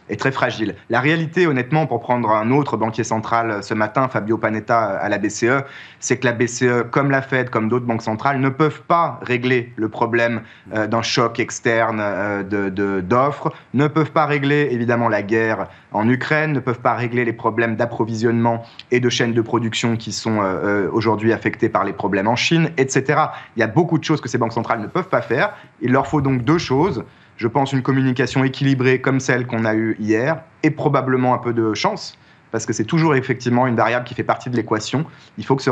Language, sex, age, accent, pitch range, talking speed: French, male, 30-49, French, 115-145 Hz, 215 wpm